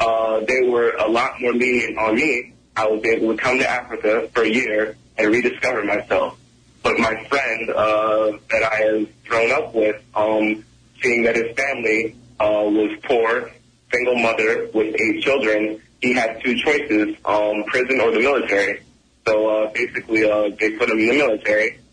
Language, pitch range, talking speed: English, 110-120 Hz, 170 wpm